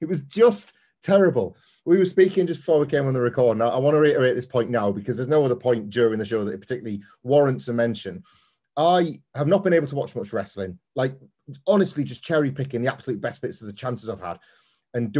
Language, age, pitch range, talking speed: English, 30-49, 115-155 Hz, 240 wpm